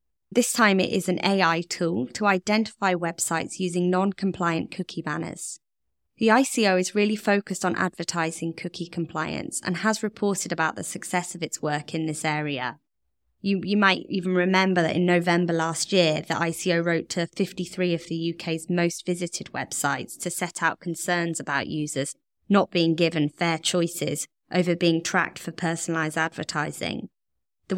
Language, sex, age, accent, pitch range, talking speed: English, female, 20-39, British, 160-185 Hz, 160 wpm